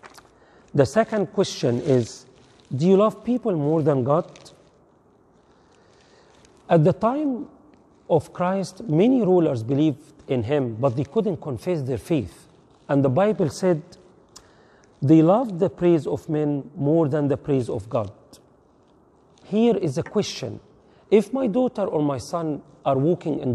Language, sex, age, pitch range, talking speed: English, male, 40-59, 140-195 Hz, 145 wpm